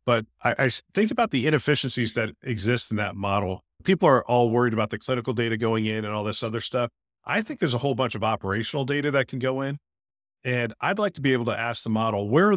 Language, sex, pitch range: English, male, 110-150 Hz